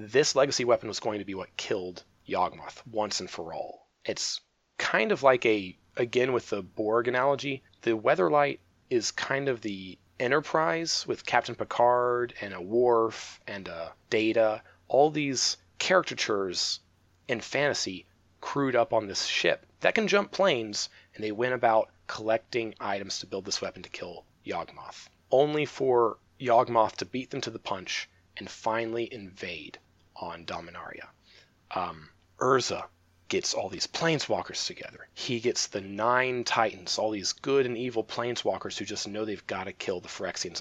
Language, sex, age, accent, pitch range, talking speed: English, male, 30-49, American, 105-135 Hz, 160 wpm